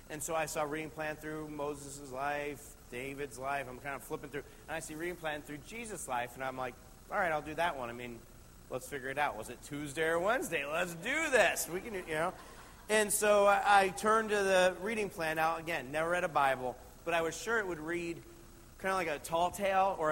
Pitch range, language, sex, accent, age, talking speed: 145-195 Hz, English, male, American, 40-59, 240 wpm